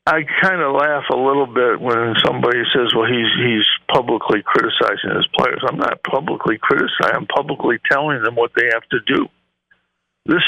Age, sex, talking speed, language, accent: 60-79, male, 180 wpm, English, American